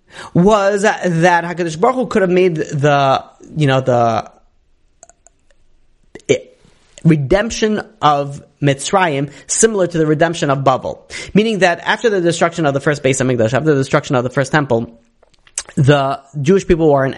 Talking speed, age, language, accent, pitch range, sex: 155 wpm, 30-49, English, American, 140-190 Hz, male